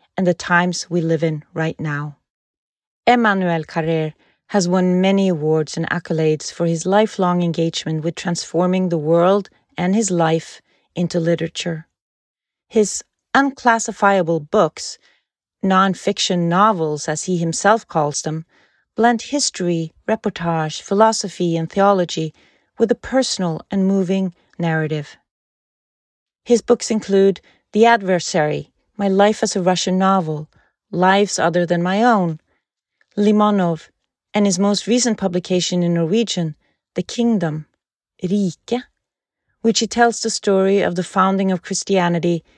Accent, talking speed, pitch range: Swedish, 125 wpm, 165-205 Hz